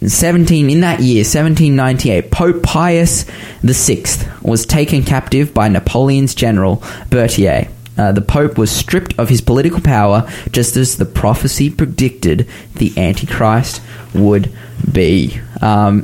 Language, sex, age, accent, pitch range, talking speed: English, male, 20-39, Australian, 110-135 Hz, 125 wpm